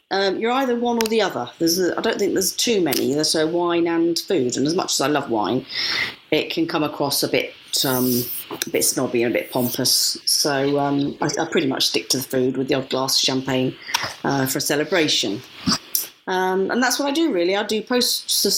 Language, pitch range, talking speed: English, 140-175 Hz, 230 wpm